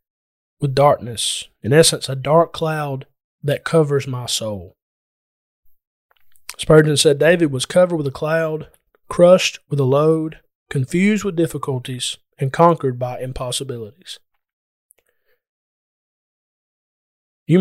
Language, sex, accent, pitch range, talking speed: English, male, American, 125-165 Hz, 105 wpm